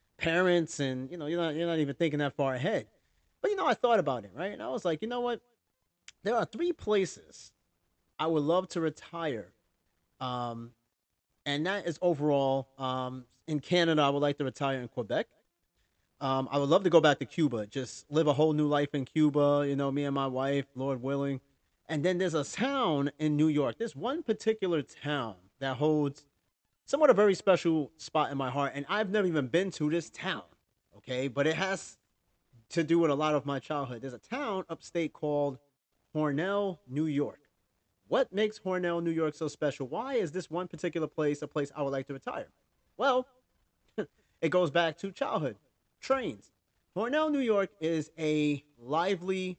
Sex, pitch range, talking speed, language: male, 140-180 Hz, 195 wpm, English